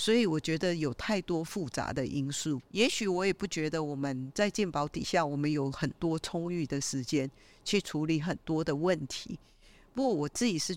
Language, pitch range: Chinese, 145-185 Hz